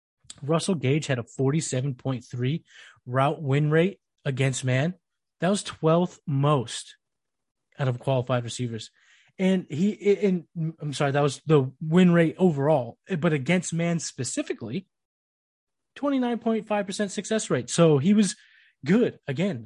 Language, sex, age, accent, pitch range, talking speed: English, male, 20-39, American, 135-200 Hz, 125 wpm